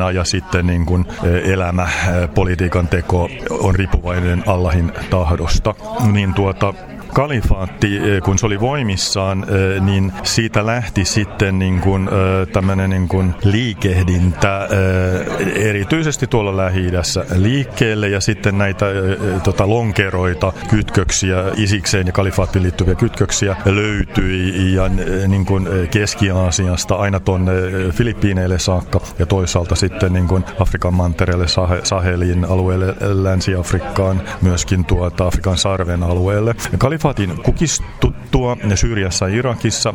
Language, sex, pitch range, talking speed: Finnish, male, 95-105 Hz, 105 wpm